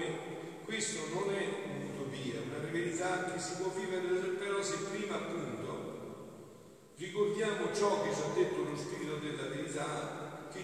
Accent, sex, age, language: native, male, 50-69, Italian